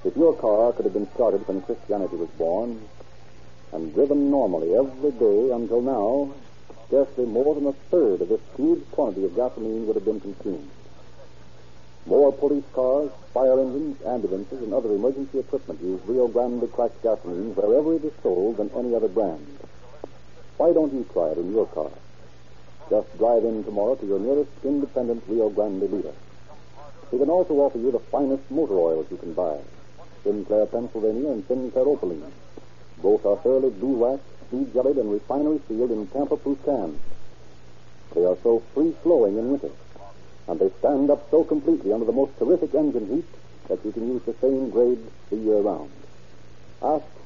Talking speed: 170 wpm